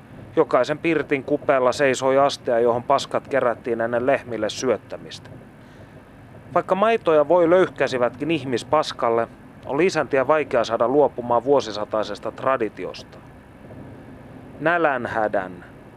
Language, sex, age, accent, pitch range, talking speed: Finnish, male, 30-49, native, 120-145 Hz, 90 wpm